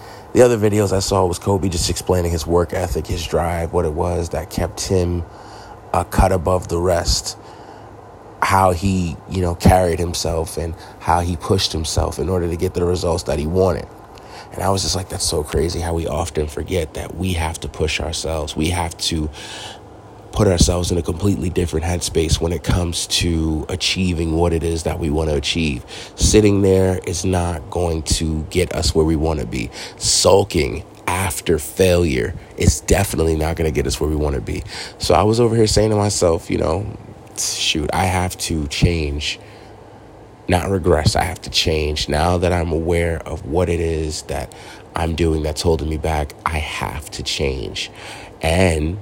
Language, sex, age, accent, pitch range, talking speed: English, male, 30-49, American, 80-95 Hz, 190 wpm